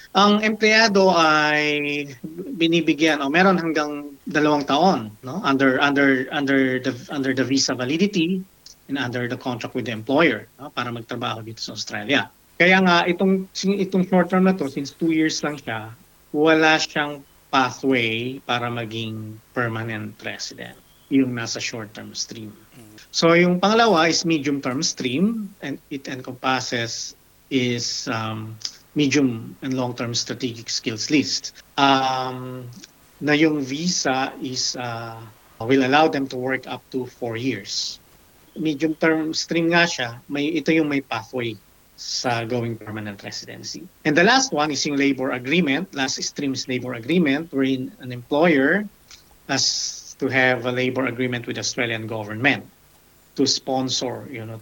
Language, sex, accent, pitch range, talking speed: Filipino, male, native, 120-155 Hz, 145 wpm